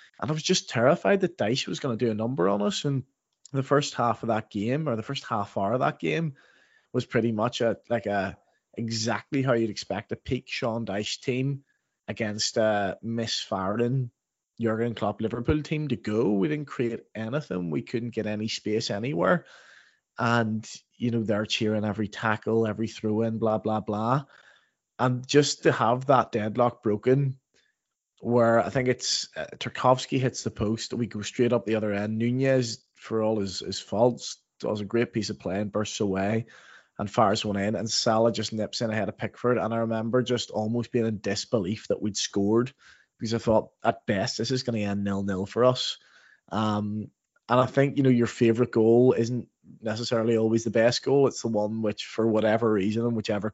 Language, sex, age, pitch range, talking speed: English, male, 20-39, 105-125 Hz, 195 wpm